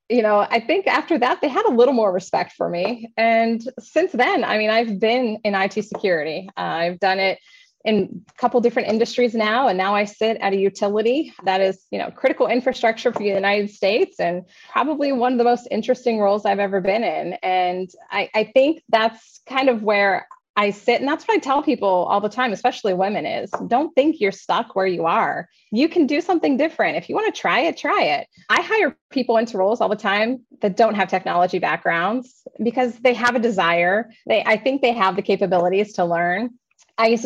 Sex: female